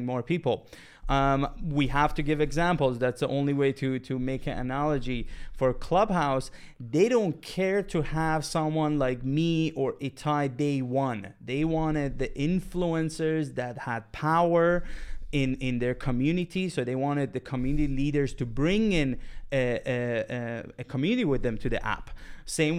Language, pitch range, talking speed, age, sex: English, 130-160 Hz, 165 wpm, 30-49, male